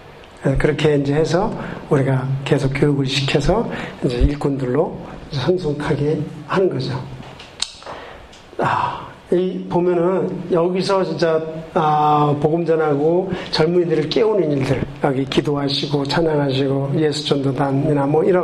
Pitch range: 140-170 Hz